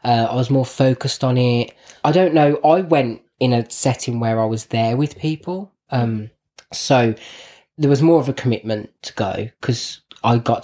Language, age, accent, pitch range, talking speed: English, 20-39, British, 110-140 Hz, 190 wpm